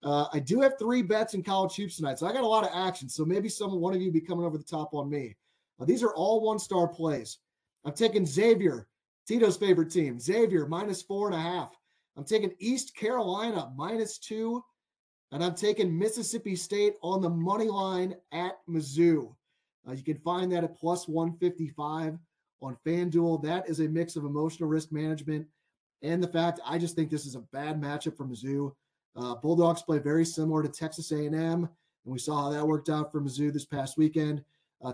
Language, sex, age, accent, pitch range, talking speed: English, male, 30-49, American, 150-185 Hz, 200 wpm